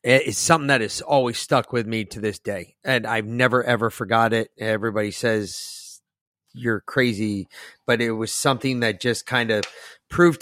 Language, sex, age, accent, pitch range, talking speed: English, male, 30-49, American, 110-130 Hz, 180 wpm